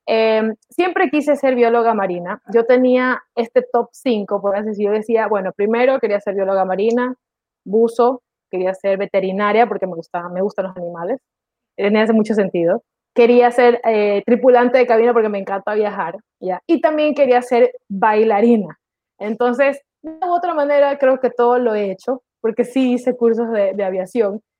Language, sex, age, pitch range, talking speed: English, female, 20-39, 200-250 Hz, 165 wpm